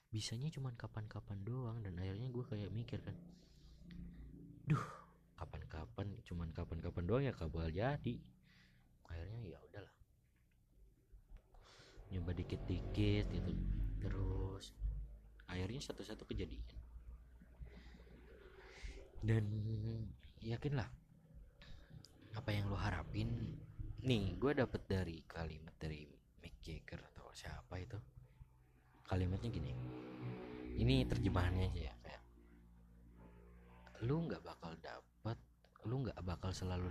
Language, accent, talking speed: Indonesian, native, 100 wpm